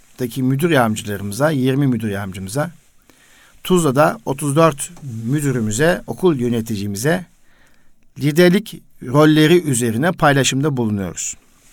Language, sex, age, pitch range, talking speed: Turkish, male, 60-79, 125-170 Hz, 80 wpm